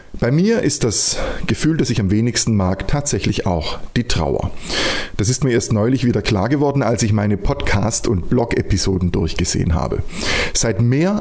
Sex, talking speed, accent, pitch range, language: male, 170 wpm, German, 95-135 Hz, German